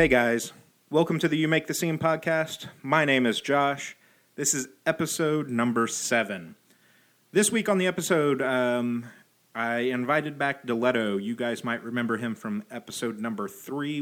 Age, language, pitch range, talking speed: 30-49, English, 110-140 Hz, 165 wpm